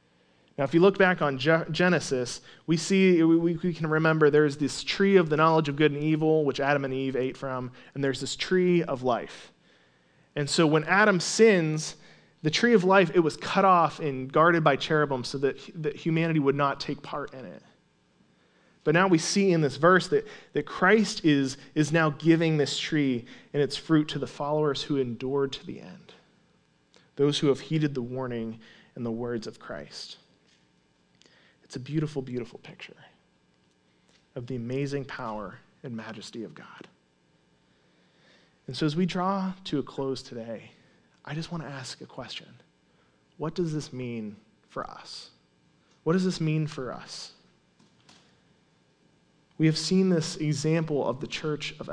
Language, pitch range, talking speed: English, 130-165 Hz, 170 wpm